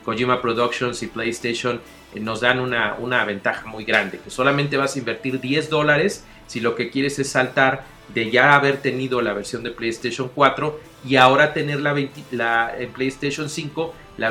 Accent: Mexican